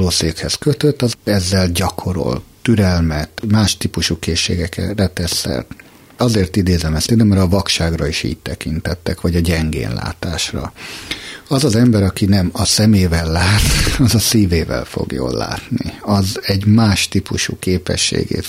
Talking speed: 135 wpm